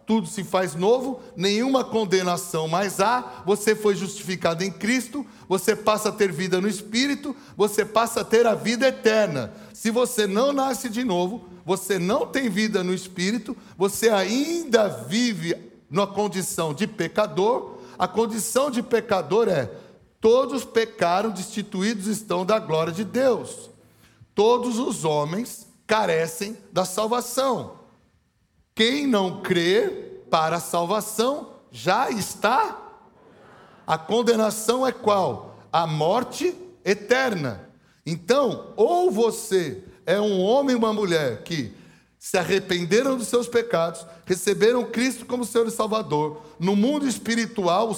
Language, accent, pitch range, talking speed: English, Brazilian, 185-240 Hz, 130 wpm